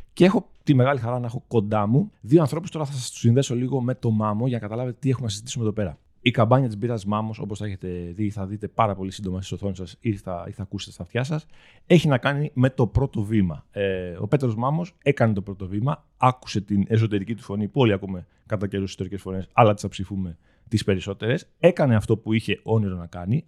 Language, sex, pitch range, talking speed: Greek, male, 100-145 Hz, 235 wpm